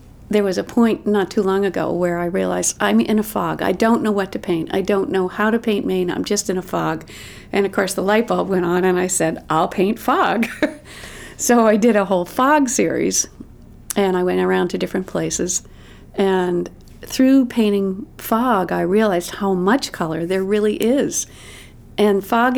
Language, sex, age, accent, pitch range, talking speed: English, female, 60-79, American, 175-210 Hz, 200 wpm